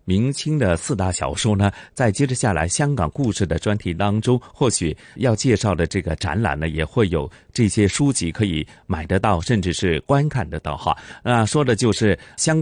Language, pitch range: Chinese, 85-120 Hz